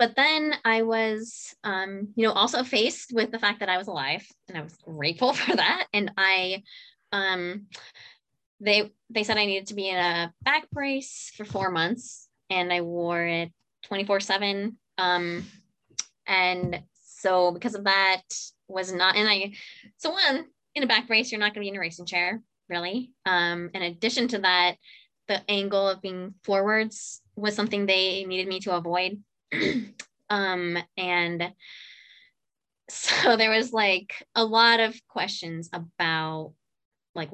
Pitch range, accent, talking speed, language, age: 175-225 Hz, American, 160 wpm, English, 20-39